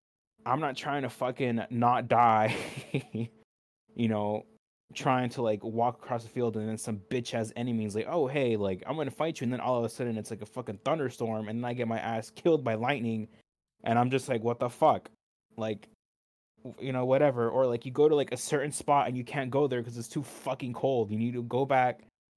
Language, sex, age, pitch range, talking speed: English, male, 20-39, 105-125 Hz, 230 wpm